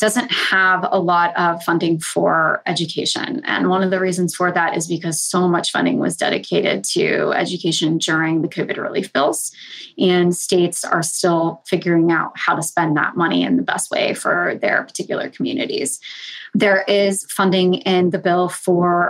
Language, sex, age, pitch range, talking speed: English, female, 20-39, 175-195 Hz, 175 wpm